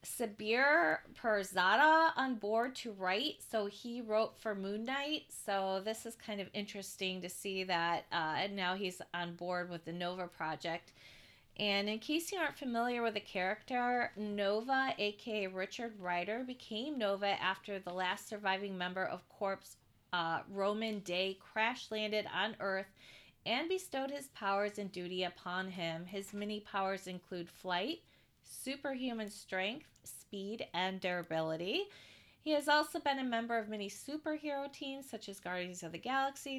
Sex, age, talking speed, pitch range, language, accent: female, 30-49, 155 wpm, 175-220 Hz, English, American